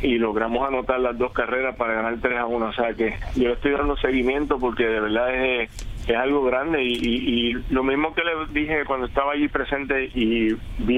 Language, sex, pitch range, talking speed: Spanish, male, 115-135 Hz, 220 wpm